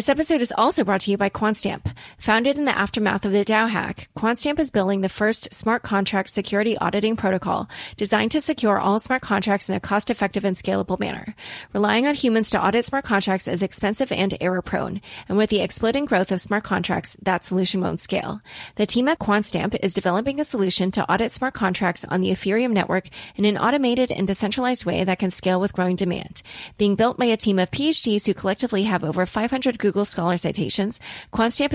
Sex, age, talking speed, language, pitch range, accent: female, 30-49, 200 wpm, English, 185-225 Hz, American